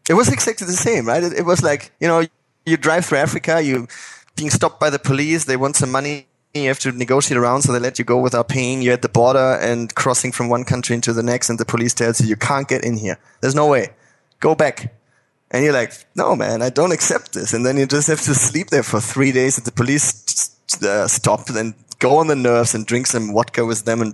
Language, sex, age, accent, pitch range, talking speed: English, male, 20-39, German, 115-140 Hz, 260 wpm